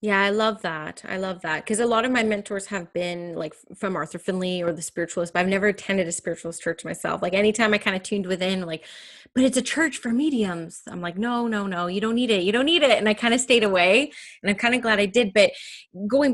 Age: 20-39